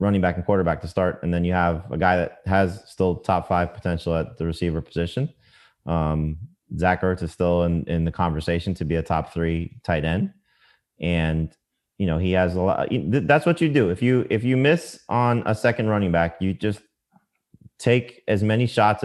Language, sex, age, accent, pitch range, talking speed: English, male, 30-49, American, 85-110 Hz, 205 wpm